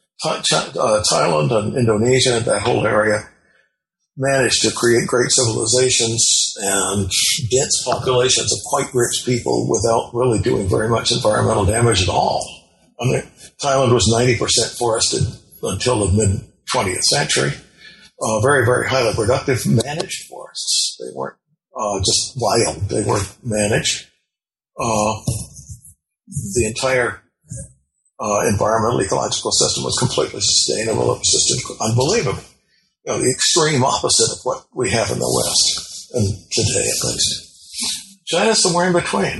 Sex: male